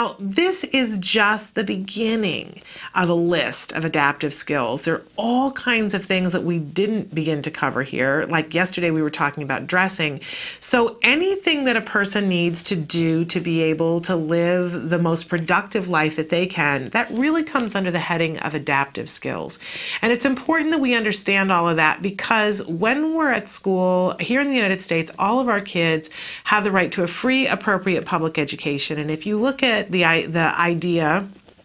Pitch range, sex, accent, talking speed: 165-215 Hz, female, American, 190 wpm